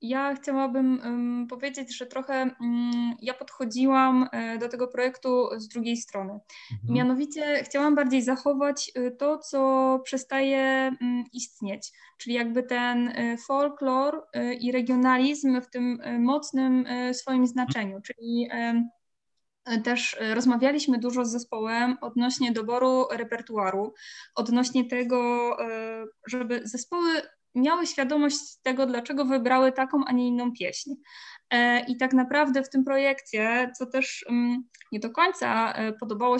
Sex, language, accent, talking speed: female, Polish, native, 110 wpm